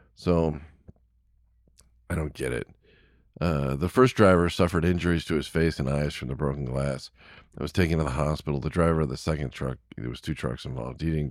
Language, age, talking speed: English, 40-59, 205 wpm